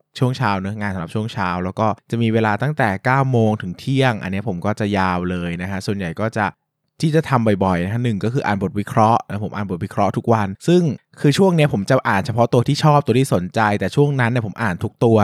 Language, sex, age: Thai, male, 20-39